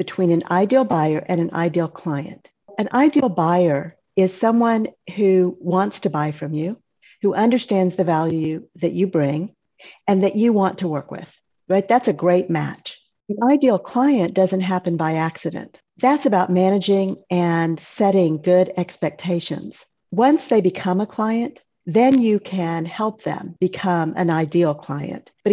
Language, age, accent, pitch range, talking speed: English, 50-69, American, 170-220 Hz, 155 wpm